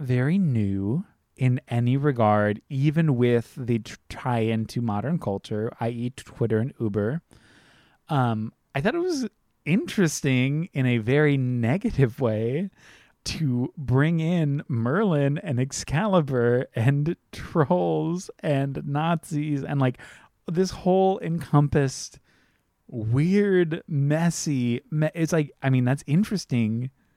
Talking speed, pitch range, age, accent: 110 wpm, 115-150 Hz, 30-49, American